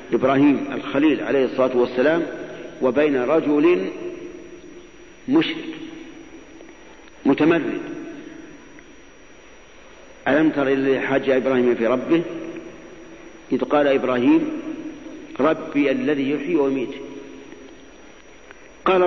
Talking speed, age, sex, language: 75 wpm, 50-69, male, Arabic